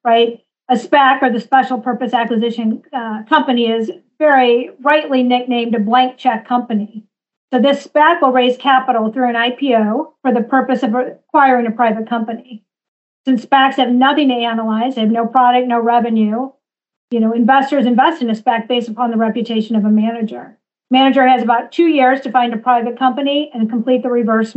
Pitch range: 230-265 Hz